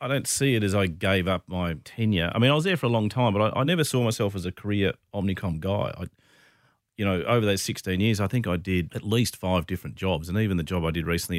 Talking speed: 280 wpm